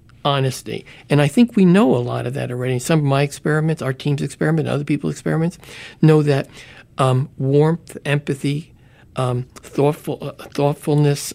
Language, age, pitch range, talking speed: English, 60-79, 130-155 Hz, 160 wpm